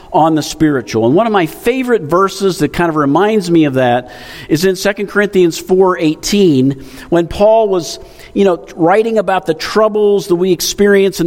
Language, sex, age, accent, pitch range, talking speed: English, male, 50-69, American, 120-195 Hz, 180 wpm